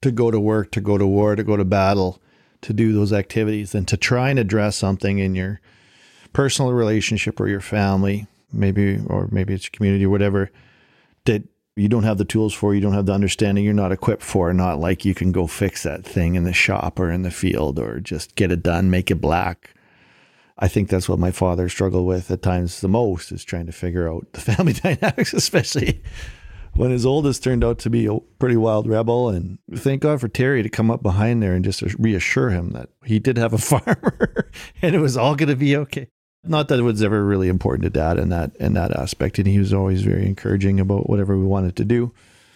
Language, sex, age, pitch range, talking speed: English, male, 40-59, 95-115 Hz, 225 wpm